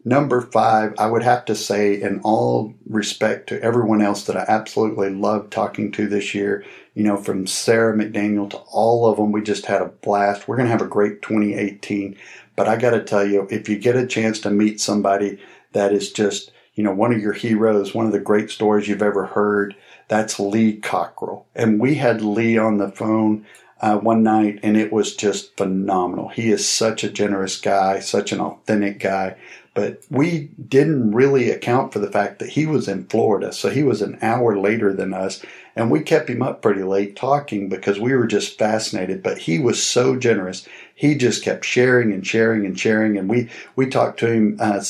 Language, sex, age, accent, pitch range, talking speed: English, male, 50-69, American, 100-115 Hz, 205 wpm